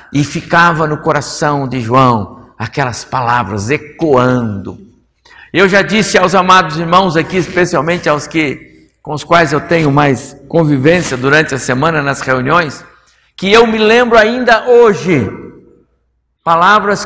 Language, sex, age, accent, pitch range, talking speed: Portuguese, male, 60-79, Brazilian, 125-185 Hz, 135 wpm